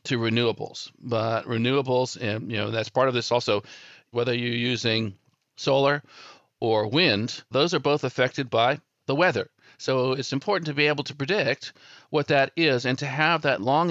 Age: 50-69